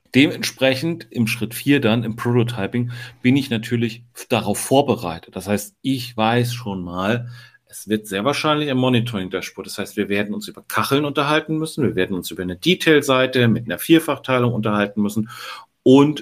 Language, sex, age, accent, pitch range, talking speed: German, male, 40-59, German, 105-130 Hz, 165 wpm